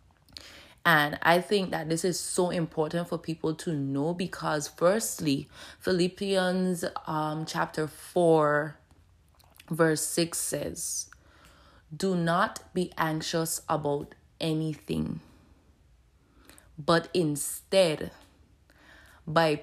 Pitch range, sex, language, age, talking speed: 140-175 Hz, female, English, 20-39, 90 wpm